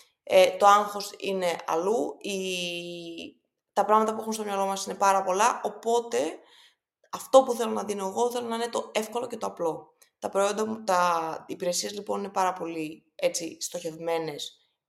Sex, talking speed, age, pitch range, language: female, 175 wpm, 20-39, 175-245 Hz, Greek